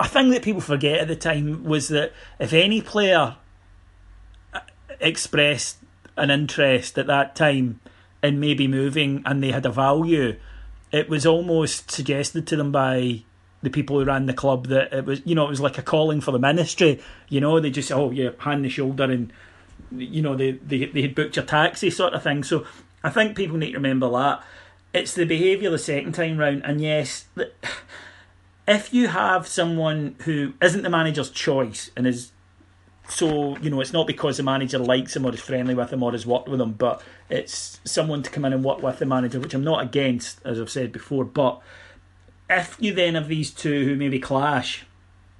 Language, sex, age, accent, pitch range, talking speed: English, male, 40-59, British, 125-155 Hz, 205 wpm